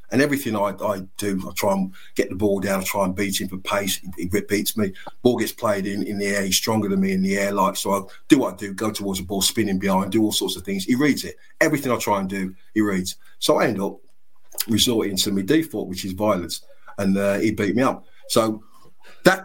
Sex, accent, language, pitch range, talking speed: male, British, English, 95-115 Hz, 260 wpm